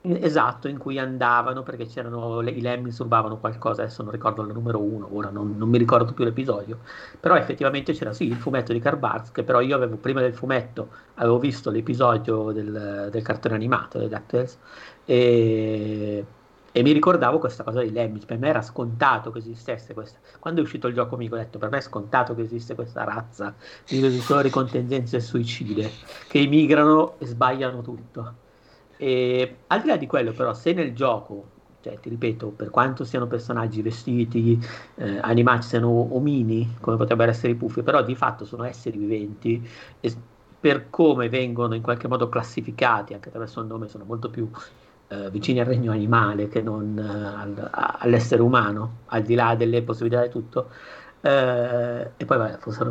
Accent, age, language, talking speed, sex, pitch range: native, 50-69, Italian, 185 wpm, male, 110-125 Hz